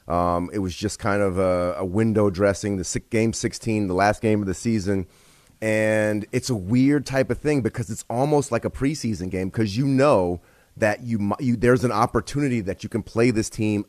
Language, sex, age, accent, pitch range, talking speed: English, male, 30-49, American, 100-125 Hz, 215 wpm